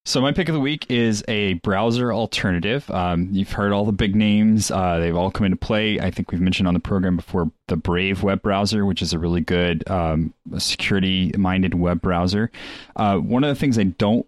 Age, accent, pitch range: 20-39, American, 85-105 Hz